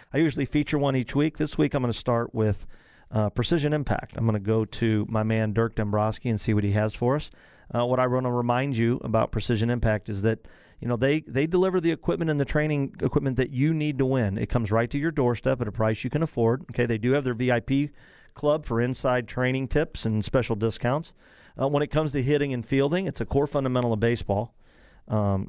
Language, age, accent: English, 40-59, American